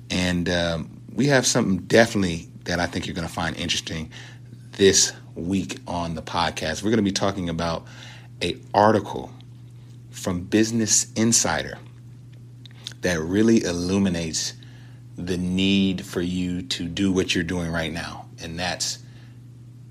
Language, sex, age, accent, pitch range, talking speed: English, male, 30-49, American, 90-120 Hz, 140 wpm